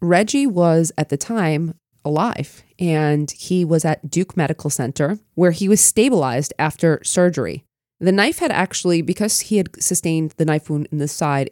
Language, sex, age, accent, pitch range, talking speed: English, female, 20-39, American, 140-180 Hz, 170 wpm